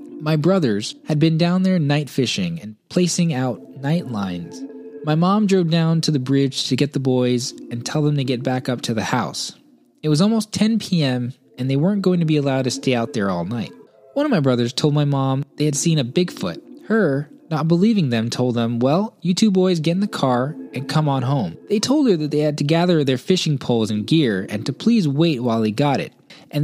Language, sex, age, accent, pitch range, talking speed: English, male, 20-39, American, 130-190 Hz, 235 wpm